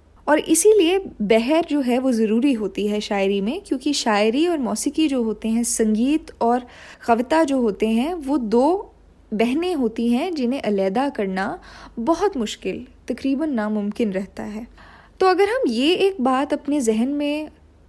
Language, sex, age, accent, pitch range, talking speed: Hindi, female, 20-39, native, 215-290 Hz, 160 wpm